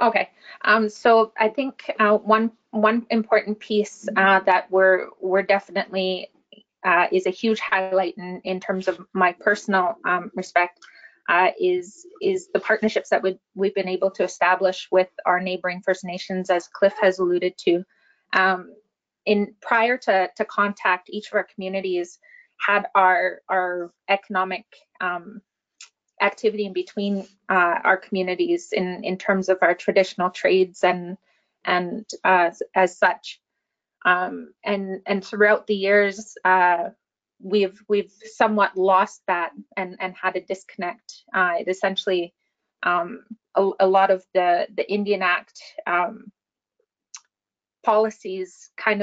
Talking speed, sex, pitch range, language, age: 140 wpm, female, 185-210 Hz, English, 20-39